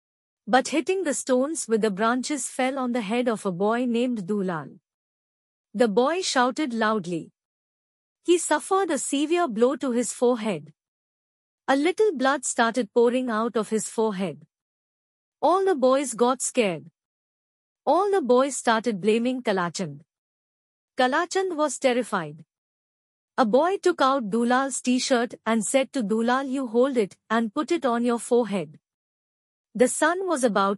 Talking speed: 145 wpm